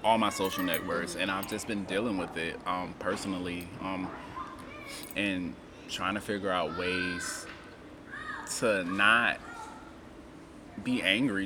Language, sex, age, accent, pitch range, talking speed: English, male, 20-39, American, 90-110 Hz, 125 wpm